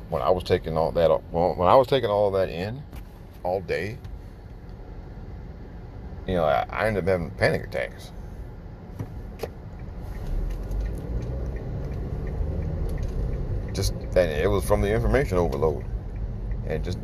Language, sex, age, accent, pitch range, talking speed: English, male, 40-59, American, 80-110 Hz, 120 wpm